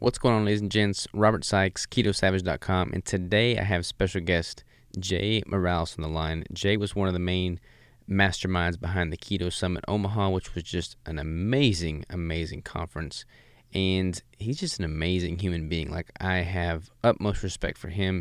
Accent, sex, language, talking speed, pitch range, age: American, male, English, 175 wpm, 90-105 Hz, 20-39